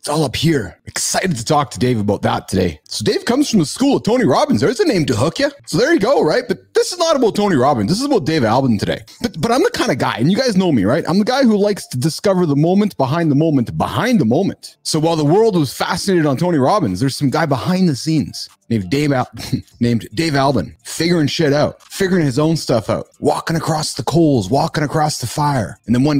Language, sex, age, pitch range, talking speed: English, male, 30-49, 140-225 Hz, 250 wpm